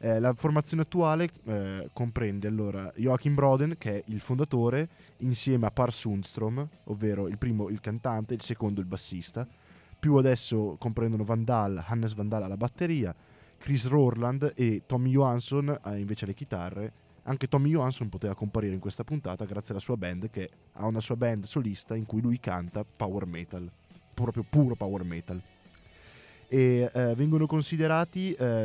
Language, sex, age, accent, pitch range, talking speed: Italian, male, 20-39, native, 105-130 Hz, 160 wpm